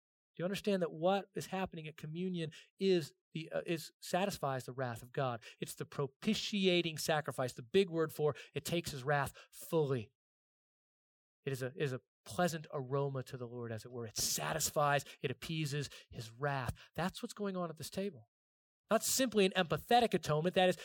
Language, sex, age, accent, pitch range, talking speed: English, male, 30-49, American, 135-180 Hz, 175 wpm